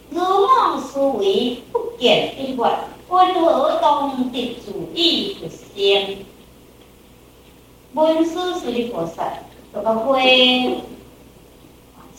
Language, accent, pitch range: Chinese, American, 255-365 Hz